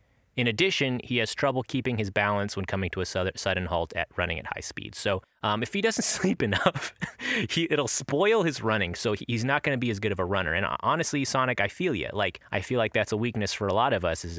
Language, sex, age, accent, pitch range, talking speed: English, male, 30-49, American, 95-125 Hz, 255 wpm